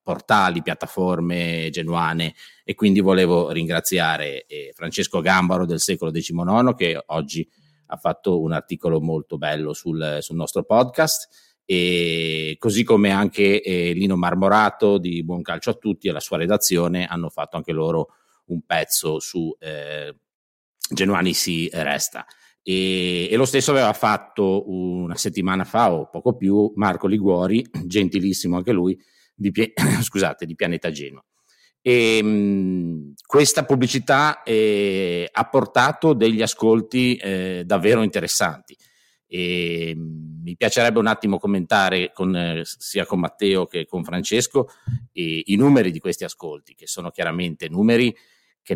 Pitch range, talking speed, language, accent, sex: 85-105 Hz, 135 wpm, Italian, native, male